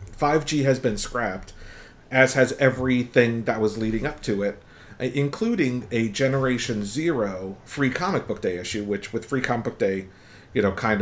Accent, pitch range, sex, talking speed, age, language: American, 105-125 Hz, male, 170 wpm, 50-69, English